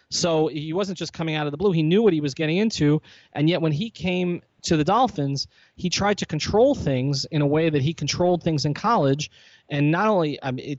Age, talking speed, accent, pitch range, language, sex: 30-49, 235 wpm, American, 120-155 Hz, English, male